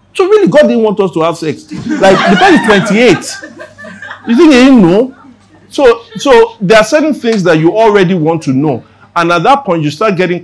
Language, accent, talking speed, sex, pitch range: English, Nigerian, 220 wpm, male, 125-175 Hz